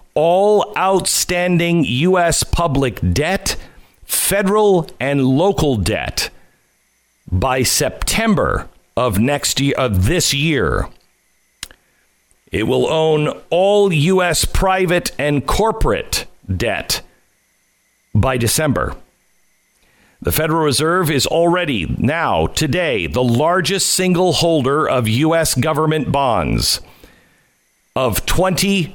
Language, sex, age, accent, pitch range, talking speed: English, male, 50-69, American, 130-170 Hz, 95 wpm